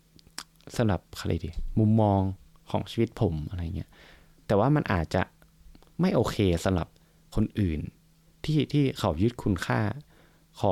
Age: 20-39